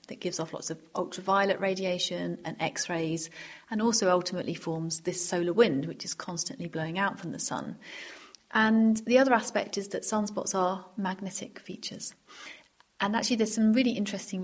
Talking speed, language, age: 165 wpm, English, 30-49